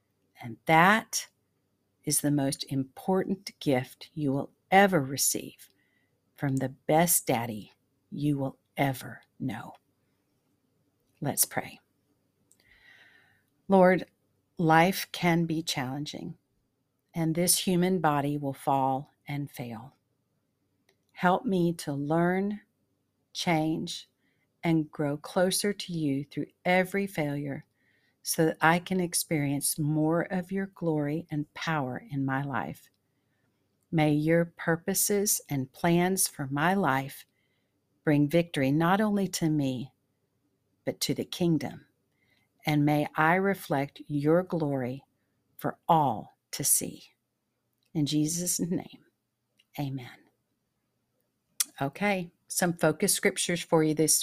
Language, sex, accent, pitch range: English, female, American, 135-175 Hz